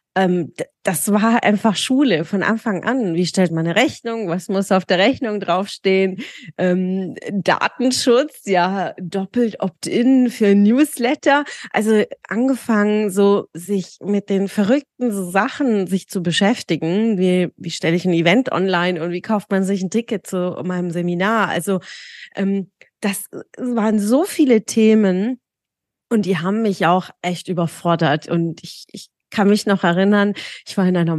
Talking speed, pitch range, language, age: 150 wpm, 180-225 Hz, German, 30-49